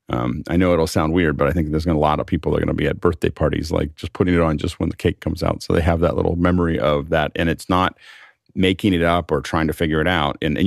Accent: American